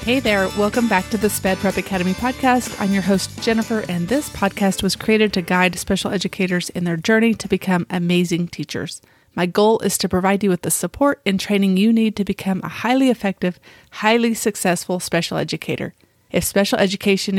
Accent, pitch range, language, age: American, 175-210 Hz, English, 30-49